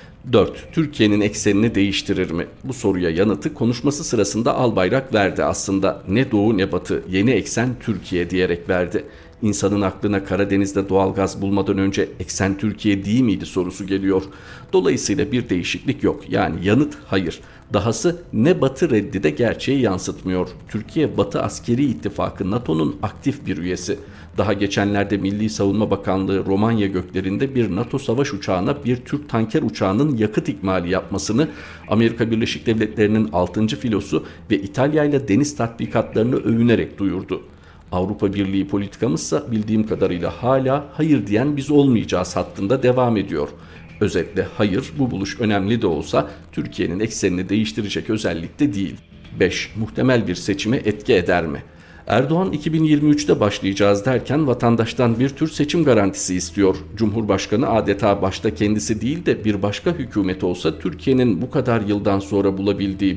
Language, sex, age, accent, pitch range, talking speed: Turkish, male, 50-69, native, 95-120 Hz, 140 wpm